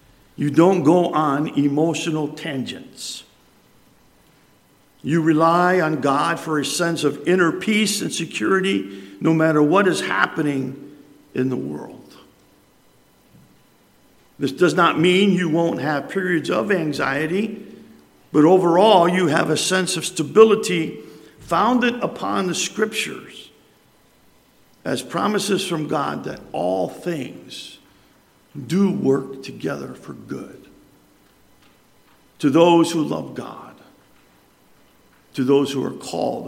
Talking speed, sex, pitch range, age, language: 115 wpm, male, 145-175 Hz, 50-69, English